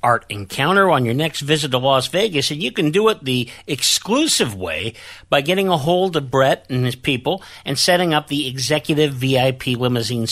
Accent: American